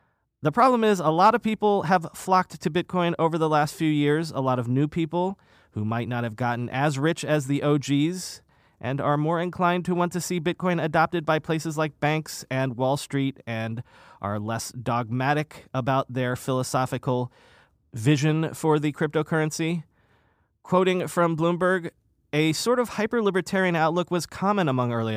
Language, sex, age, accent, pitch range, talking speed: English, male, 30-49, American, 130-170 Hz, 170 wpm